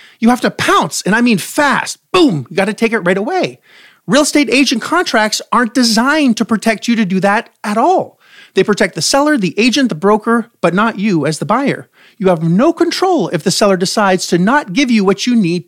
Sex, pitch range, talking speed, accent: male, 195-290 Hz, 225 wpm, American